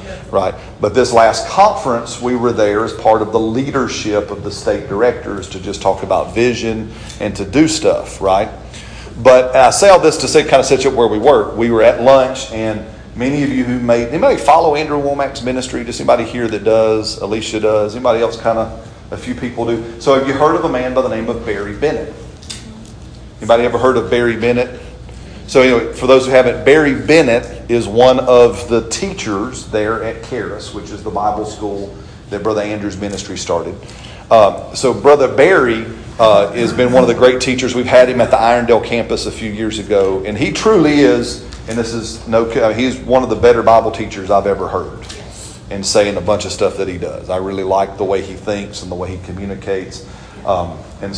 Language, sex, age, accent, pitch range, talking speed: English, male, 40-59, American, 105-125 Hz, 215 wpm